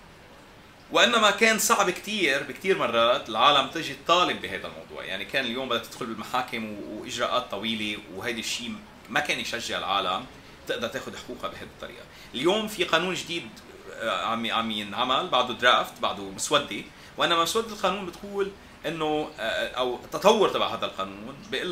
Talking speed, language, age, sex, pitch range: 145 wpm, English, 30-49, male, 115-175 Hz